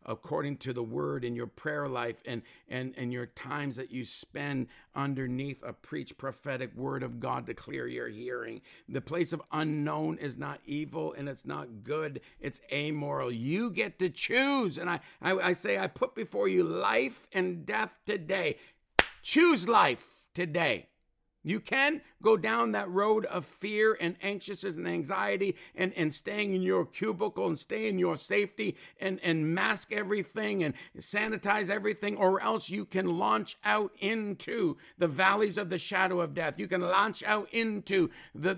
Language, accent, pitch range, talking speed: English, American, 155-210 Hz, 170 wpm